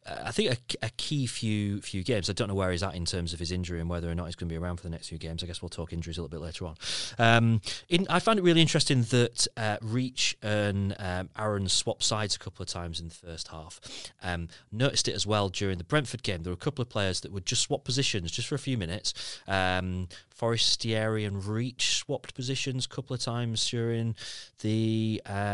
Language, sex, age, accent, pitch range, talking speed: English, male, 30-49, British, 85-115 Hz, 245 wpm